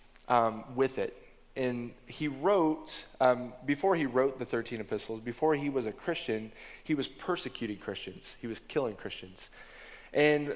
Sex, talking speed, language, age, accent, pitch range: male, 155 wpm, English, 20-39, American, 120-150 Hz